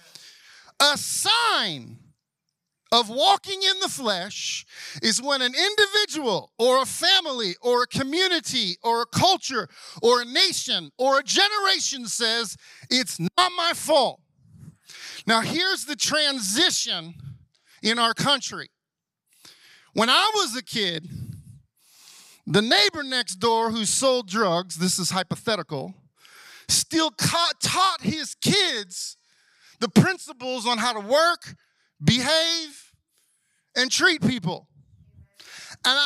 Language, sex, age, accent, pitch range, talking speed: English, male, 40-59, American, 225-345 Hz, 115 wpm